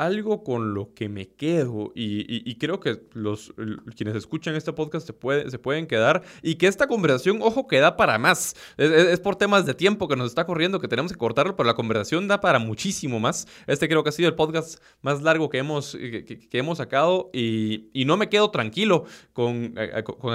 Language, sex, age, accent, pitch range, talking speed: Spanish, male, 20-39, Mexican, 115-175 Hz, 225 wpm